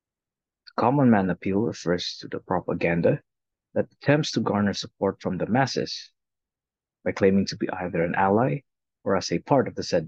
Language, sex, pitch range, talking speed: English, male, 95-120 Hz, 175 wpm